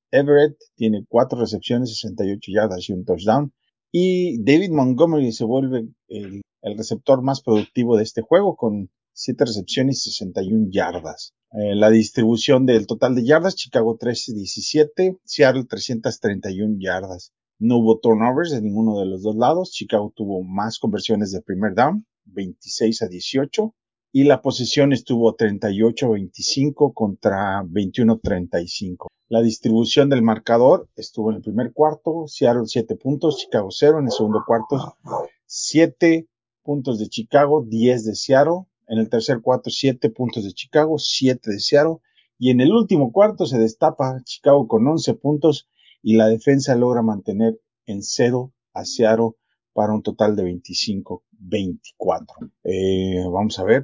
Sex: male